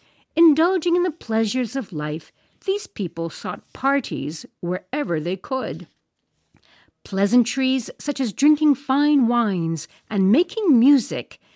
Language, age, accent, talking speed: English, 50-69, American, 115 wpm